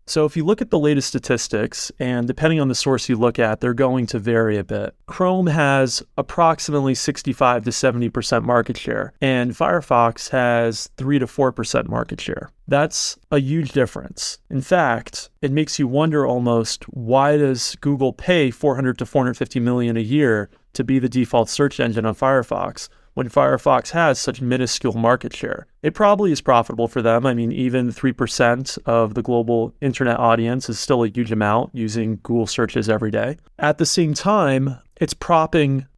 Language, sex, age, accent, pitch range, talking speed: English, male, 30-49, American, 120-145 Hz, 175 wpm